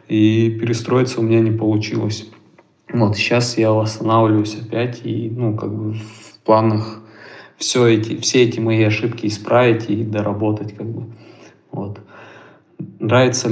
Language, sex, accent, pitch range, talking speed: Russian, male, native, 105-115 Hz, 135 wpm